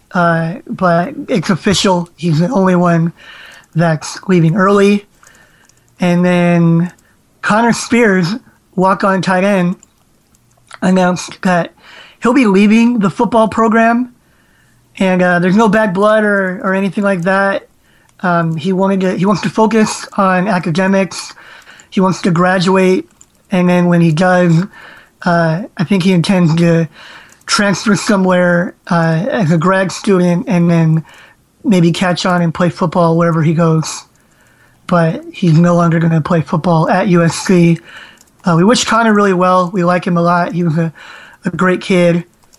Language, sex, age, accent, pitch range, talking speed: English, male, 30-49, American, 175-200 Hz, 150 wpm